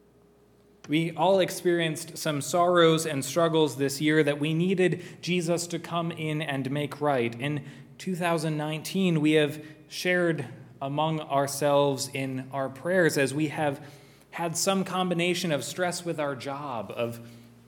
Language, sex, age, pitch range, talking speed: English, male, 20-39, 135-160 Hz, 140 wpm